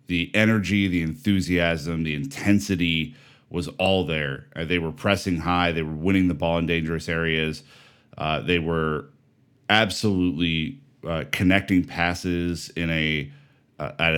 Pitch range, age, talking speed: 80-95 Hz, 30-49, 135 wpm